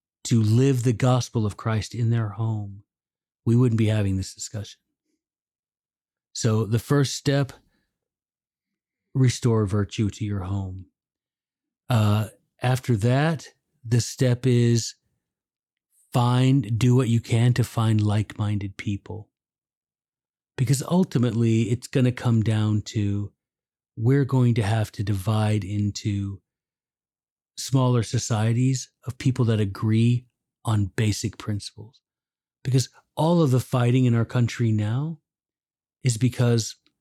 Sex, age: male, 40-59